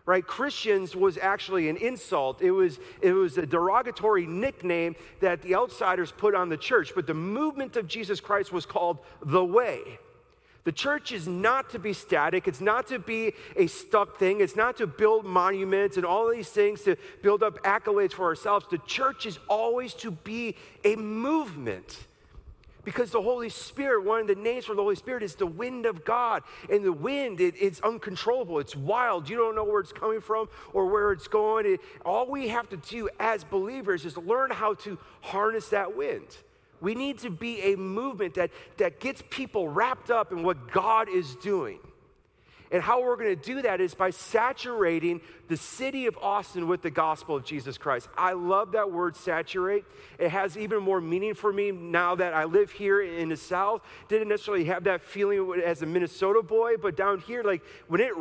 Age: 40-59